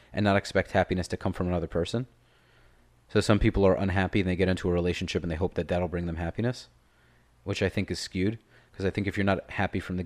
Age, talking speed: 30-49, 250 wpm